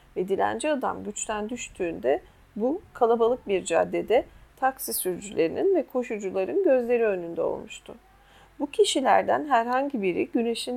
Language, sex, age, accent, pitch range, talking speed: Turkish, female, 40-59, native, 200-275 Hz, 115 wpm